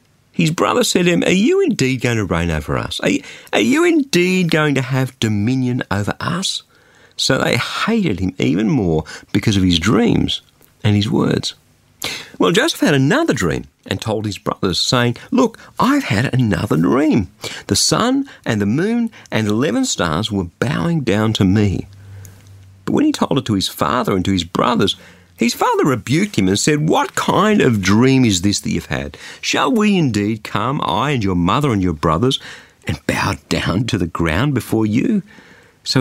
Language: English